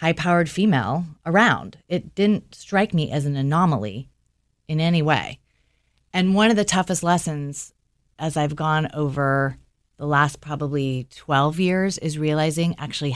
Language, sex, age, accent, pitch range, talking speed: English, female, 30-49, American, 140-175 Hz, 140 wpm